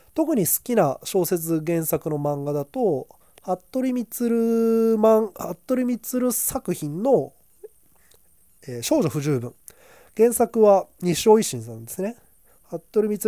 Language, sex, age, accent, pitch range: Japanese, male, 20-39, native, 155-245 Hz